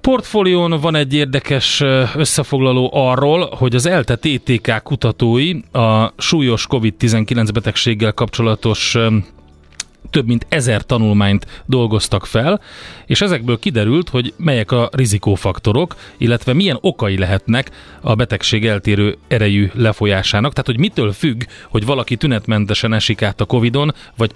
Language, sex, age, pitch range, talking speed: Hungarian, male, 30-49, 110-135 Hz, 125 wpm